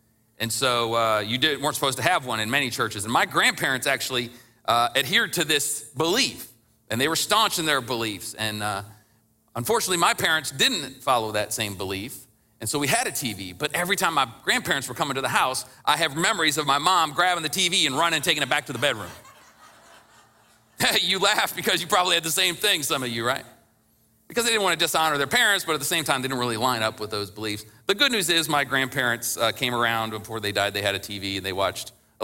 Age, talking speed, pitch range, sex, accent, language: 40-59, 235 wpm, 110-160 Hz, male, American, English